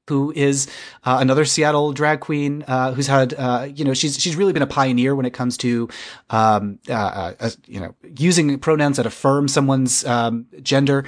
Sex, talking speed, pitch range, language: male, 190 wpm, 120-165 Hz, English